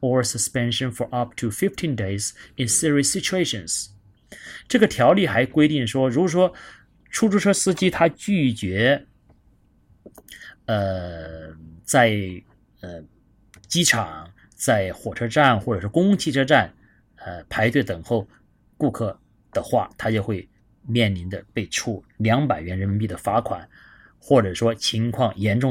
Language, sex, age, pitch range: Chinese, male, 30-49, 100-140 Hz